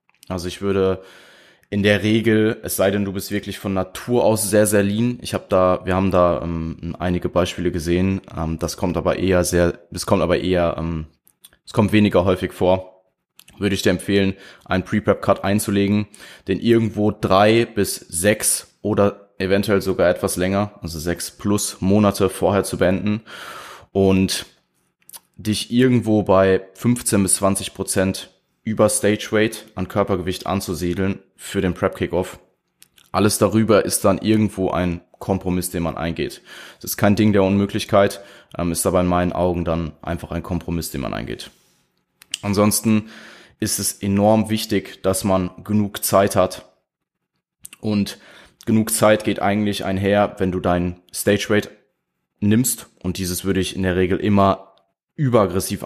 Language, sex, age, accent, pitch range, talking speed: German, male, 20-39, German, 90-105 Hz, 155 wpm